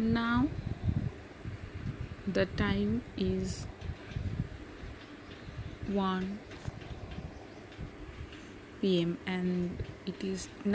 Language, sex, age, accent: Bengali, female, 20-39, native